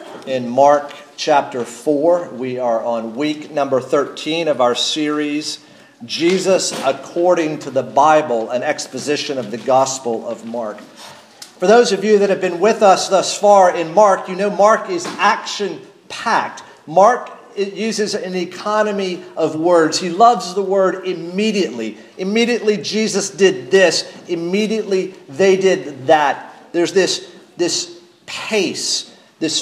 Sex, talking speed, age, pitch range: male, 135 wpm, 50-69, 155-200 Hz